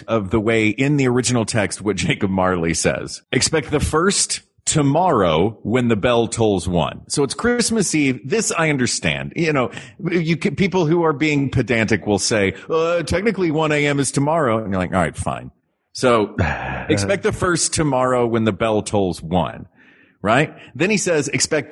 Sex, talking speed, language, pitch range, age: male, 180 wpm, English, 105-150 Hz, 40-59